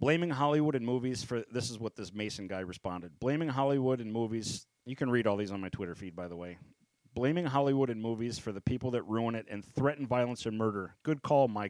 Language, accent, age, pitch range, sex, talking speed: English, American, 40-59, 110-140 Hz, male, 235 wpm